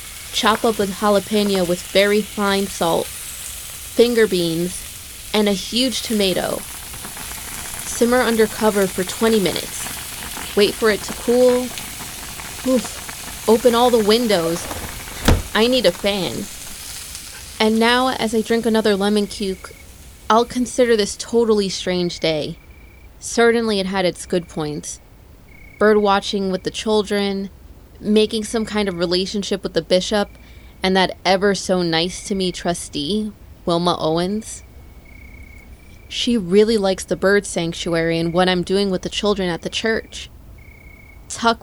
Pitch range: 175-225 Hz